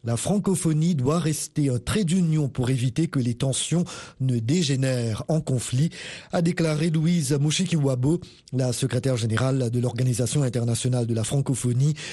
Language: Italian